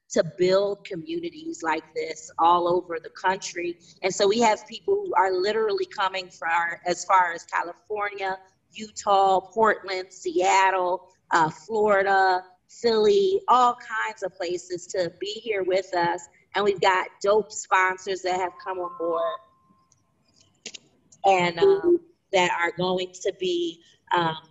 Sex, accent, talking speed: female, American, 135 wpm